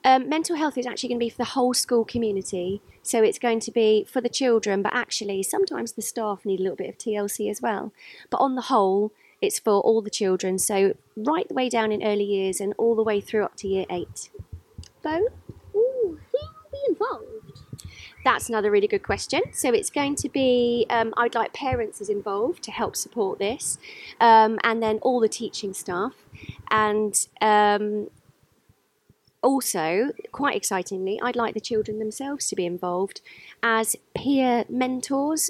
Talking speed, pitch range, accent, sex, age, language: 180 wpm, 205-260 Hz, British, female, 20-39, English